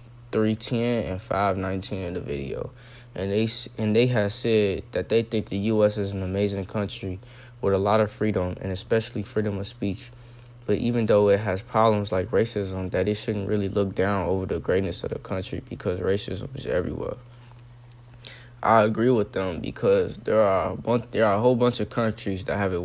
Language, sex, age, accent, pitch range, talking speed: English, male, 20-39, American, 100-120 Hz, 195 wpm